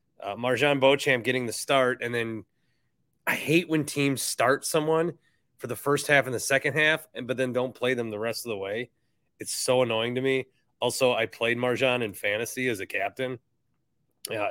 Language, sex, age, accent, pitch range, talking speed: English, male, 30-49, American, 125-150 Hz, 200 wpm